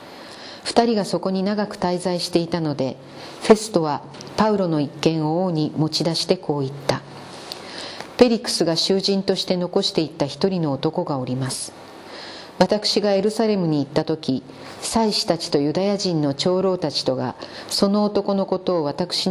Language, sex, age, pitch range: Japanese, female, 40-59, 155-190 Hz